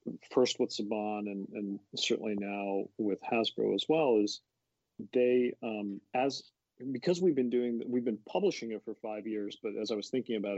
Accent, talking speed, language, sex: American, 180 wpm, English, male